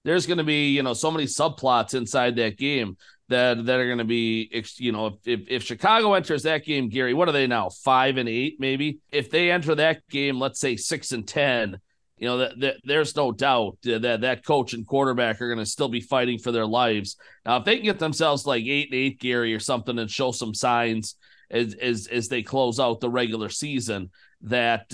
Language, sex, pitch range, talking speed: English, male, 115-145 Hz, 230 wpm